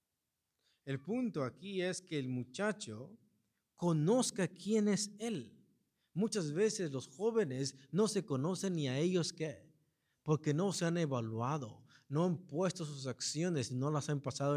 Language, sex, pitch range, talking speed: English, male, 105-170 Hz, 150 wpm